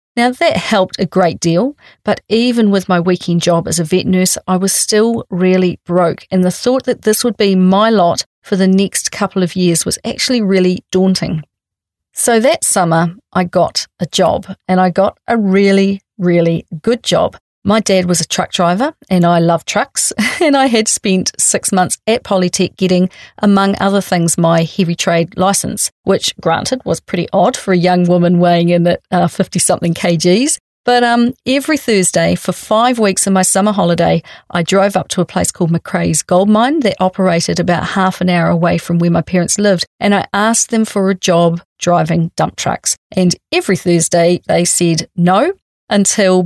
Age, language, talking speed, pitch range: 40-59, English, 190 wpm, 175-205 Hz